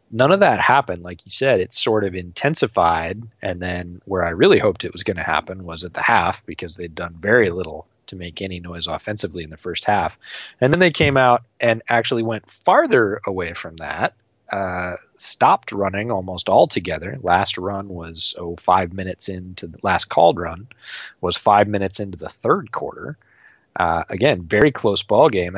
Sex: male